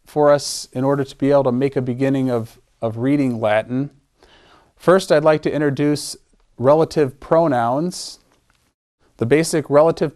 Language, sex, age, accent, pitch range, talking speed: English, male, 40-59, American, 130-165 Hz, 150 wpm